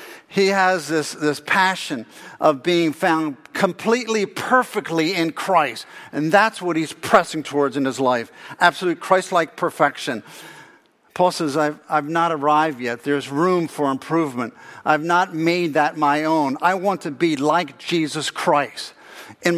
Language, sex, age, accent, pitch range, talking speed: English, male, 50-69, American, 140-180 Hz, 150 wpm